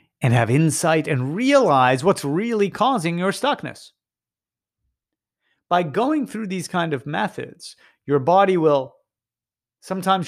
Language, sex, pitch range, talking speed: English, male, 135-195 Hz, 125 wpm